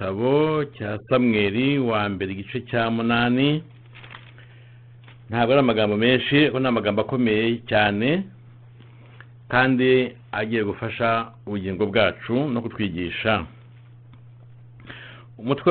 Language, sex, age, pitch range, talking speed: English, male, 60-79, 115-125 Hz, 90 wpm